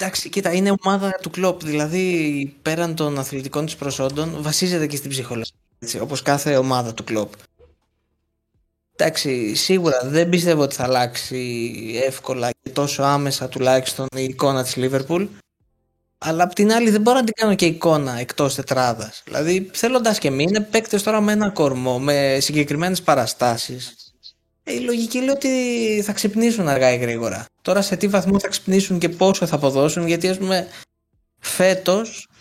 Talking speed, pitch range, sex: 155 wpm, 135-195 Hz, male